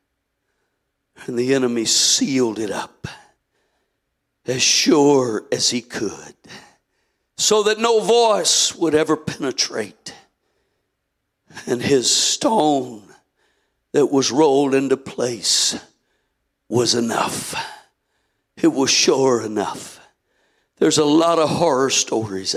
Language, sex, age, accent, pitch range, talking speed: English, male, 60-79, American, 125-160 Hz, 100 wpm